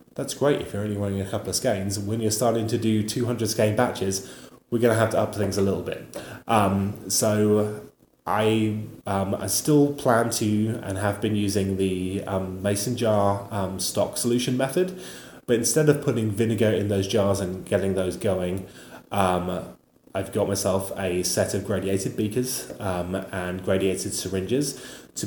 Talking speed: 175 wpm